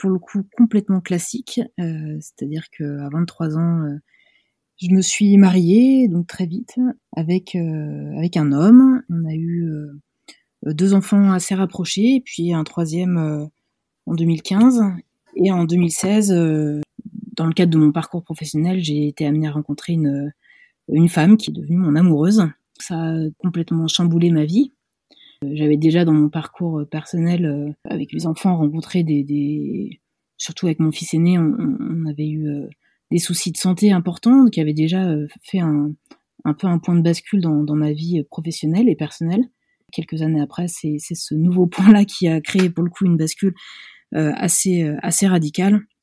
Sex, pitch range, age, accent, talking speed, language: female, 155-190 Hz, 30-49, French, 175 wpm, French